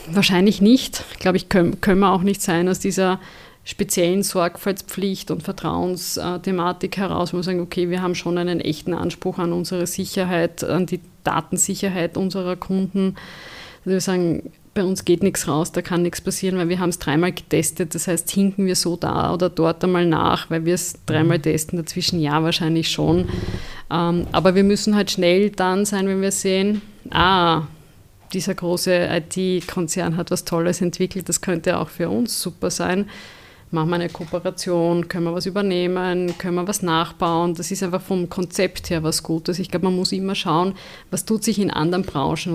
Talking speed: 180 wpm